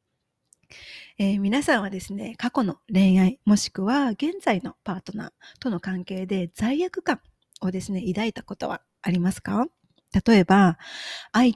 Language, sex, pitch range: Japanese, female, 185-240 Hz